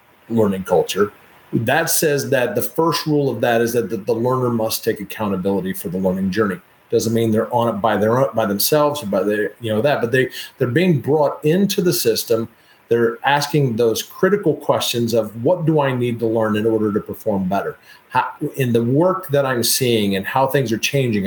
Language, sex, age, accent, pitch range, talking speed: English, male, 40-59, American, 110-140 Hz, 210 wpm